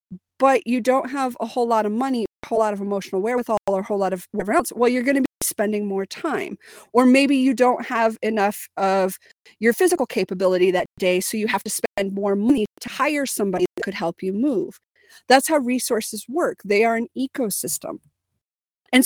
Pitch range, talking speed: 190-265 Hz, 210 wpm